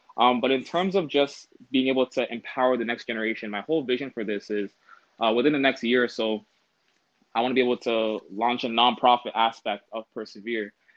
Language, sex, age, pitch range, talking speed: English, male, 20-39, 115-125 Hz, 210 wpm